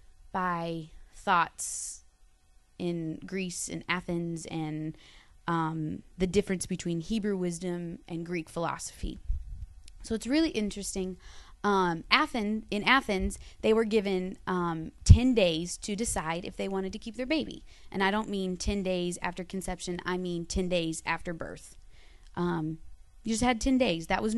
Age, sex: 20-39, female